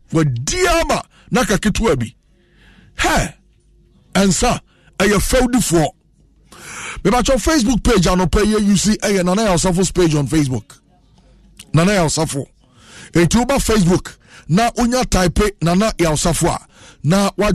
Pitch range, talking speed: 170-245 Hz, 140 wpm